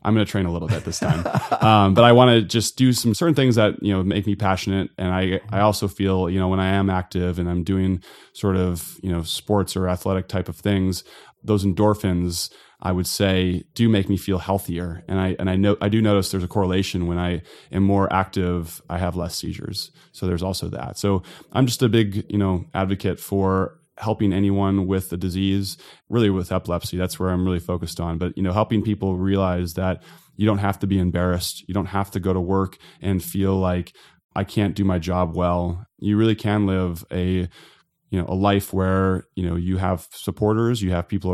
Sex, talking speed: male, 220 wpm